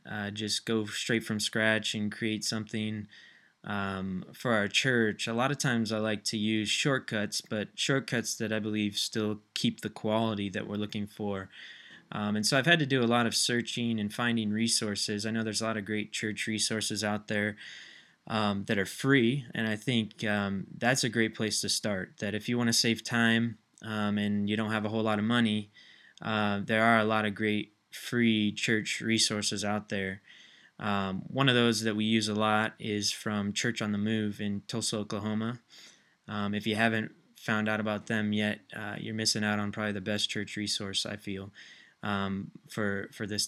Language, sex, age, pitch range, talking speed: English, male, 20-39, 105-115 Hz, 200 wpm